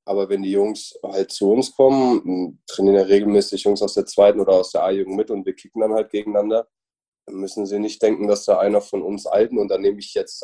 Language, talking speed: German, 240 wpm